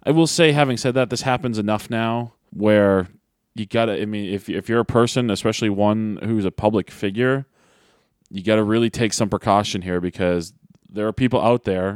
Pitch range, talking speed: 95-120 Hz, 205 wpm